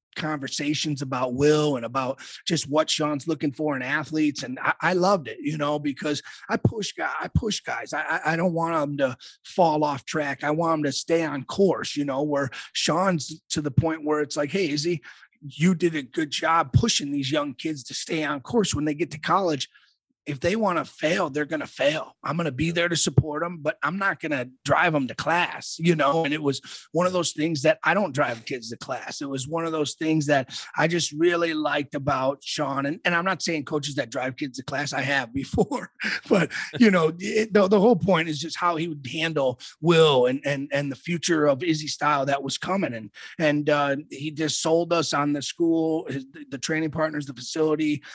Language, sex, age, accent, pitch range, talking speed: English, male, 30-49, American, 140-165 Hz, 225 wpm